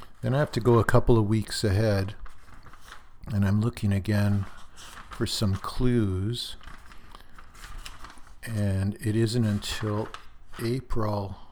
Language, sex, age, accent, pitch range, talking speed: English, male, 50-69, American, 90-110 Hz, 115 wpm